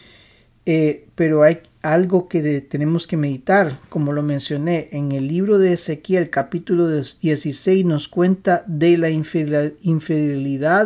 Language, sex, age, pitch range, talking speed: Spanish, male, 40-59, 150-185 Hz, 125 wpm